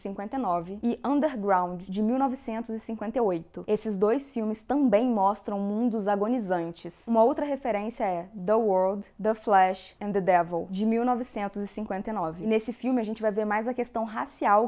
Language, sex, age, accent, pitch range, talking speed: Portuguese, female, 10-29, Brazilian, 195-235 Hz, 145 wpm